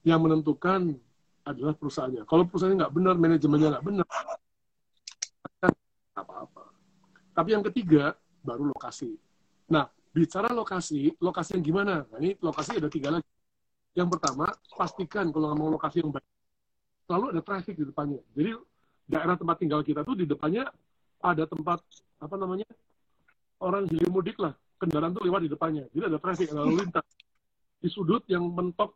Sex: male